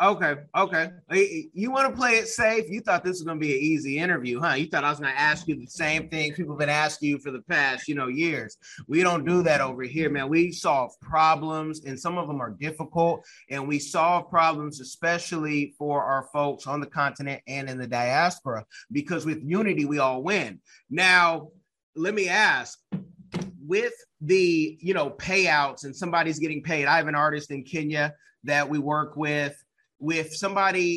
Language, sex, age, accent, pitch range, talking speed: English, male, 30-49, American, 150-180 Hz, 200 wpm